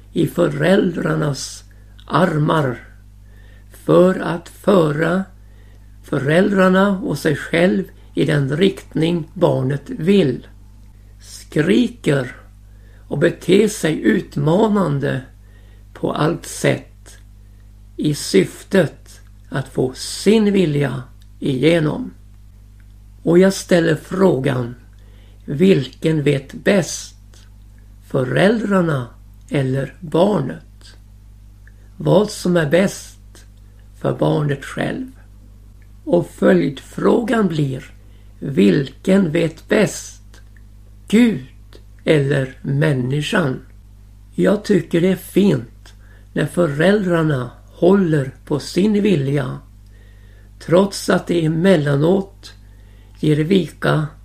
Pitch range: 100-170 Hz